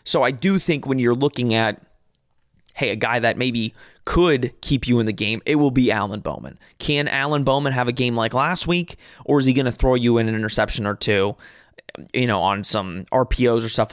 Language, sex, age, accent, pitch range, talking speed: English, male, 20-39, American, 115-145 Hz, 225 wpm